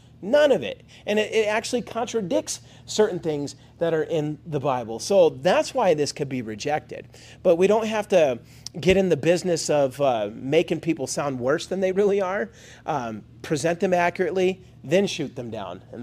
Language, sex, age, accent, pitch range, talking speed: English, male, 30-49, American, 140-200 Hz, 185 wpm